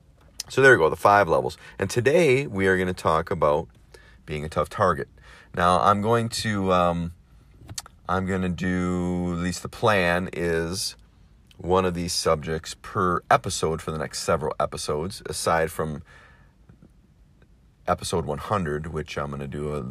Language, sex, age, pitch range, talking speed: English, male, 40-59, 75-95 Hz, 165 wpm